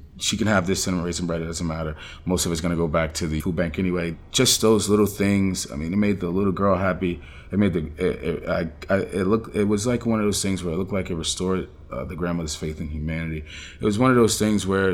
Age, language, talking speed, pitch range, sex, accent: 30-49, English, 275 wpm, 85-105 Hz, male, American